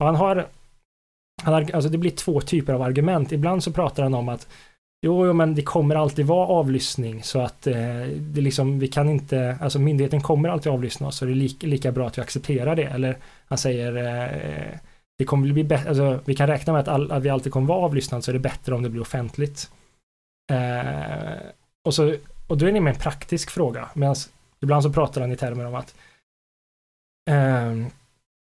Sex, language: male, Swedish